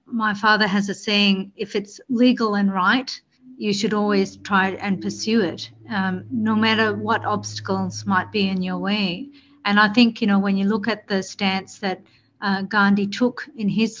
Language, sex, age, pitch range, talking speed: English, female, 50-69, 190-225 Hz, 190 wpm